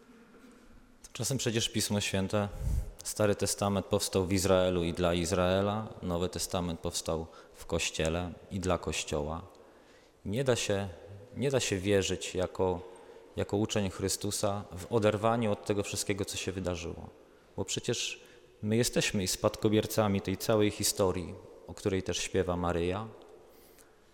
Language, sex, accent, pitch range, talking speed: Polish, male, native, 90-105 Hz, 125 wpm